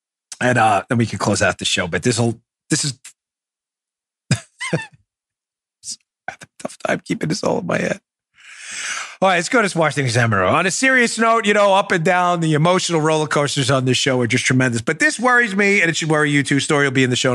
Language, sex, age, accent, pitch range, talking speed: English, male, 30-49, American, 115-165 Hz, 230 wpm